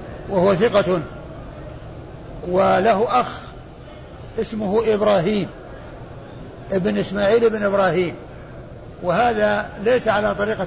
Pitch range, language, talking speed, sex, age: 175-210 Hz, Arabic, 80 wpm, male, 60-79